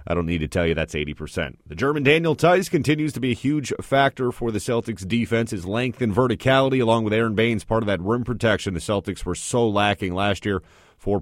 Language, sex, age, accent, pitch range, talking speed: English, male, 30-49, American, 100-130 Hz, 230 wpm